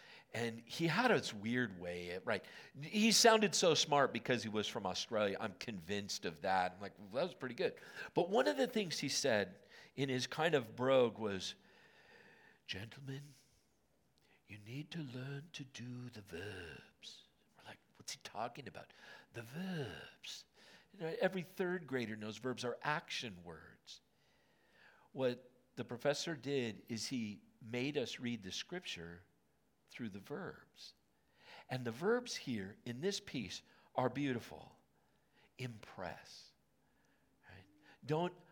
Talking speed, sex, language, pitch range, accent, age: 145 wpm, male, English, 110-150 Hz, American, 50-69